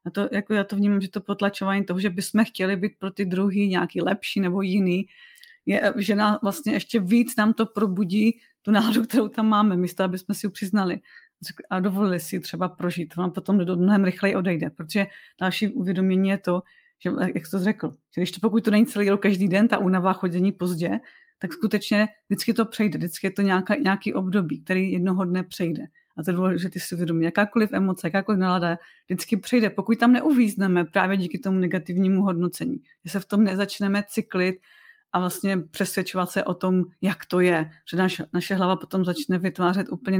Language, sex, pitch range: Czech, female, 180-210 Hz